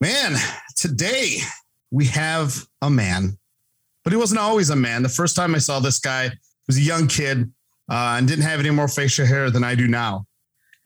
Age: 40-59